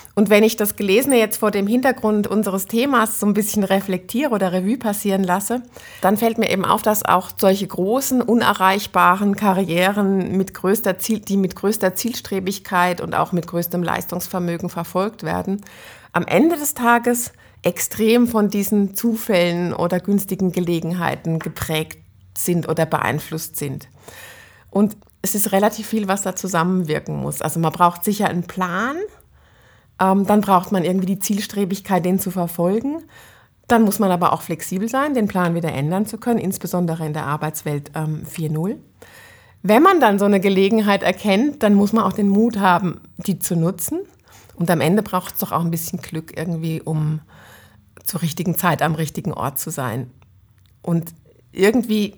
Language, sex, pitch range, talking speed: German, female, 170-210 Hz, 160 wpm